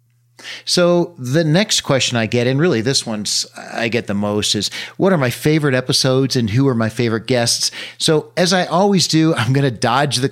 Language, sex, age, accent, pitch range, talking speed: English, male, 40-59, American, 115-165 Hz, 210 wpm